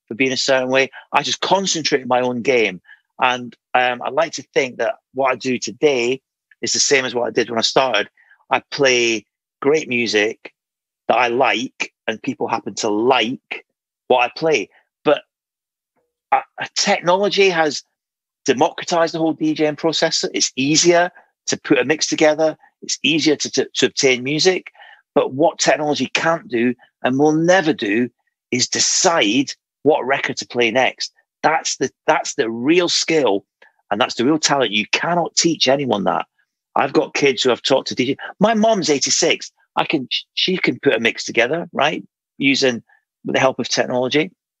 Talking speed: 175 wpm